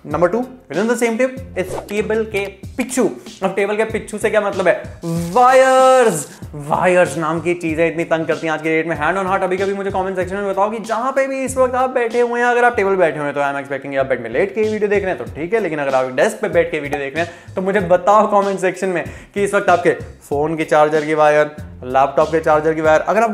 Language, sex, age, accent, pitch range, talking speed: Hindi, male, 20-39, native, 160-220 Hz, 80 wpm